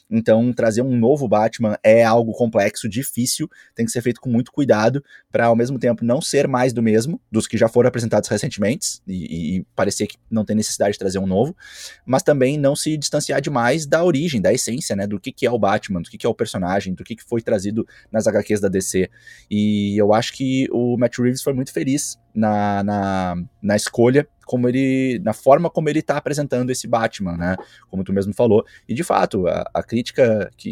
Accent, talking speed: Brazilian, 215 wpm